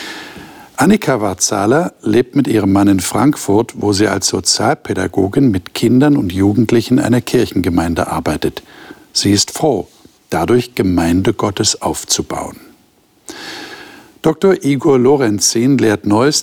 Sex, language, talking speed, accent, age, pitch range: male, German, 115 wpm, German, 60-79, 100-135 Hz